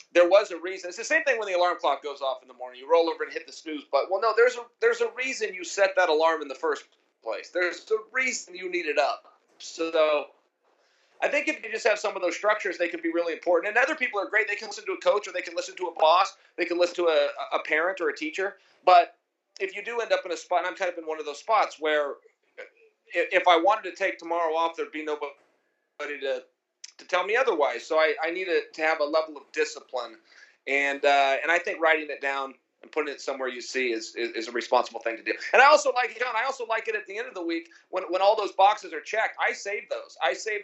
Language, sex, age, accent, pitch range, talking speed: English, male, 30-49, American, 165-250 Hz, 275 wpm